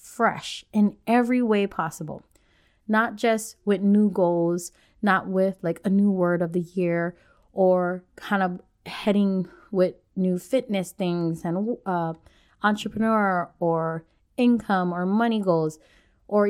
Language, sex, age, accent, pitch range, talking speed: English, female, 20-39, American, 180-230 Hz, 130 wpm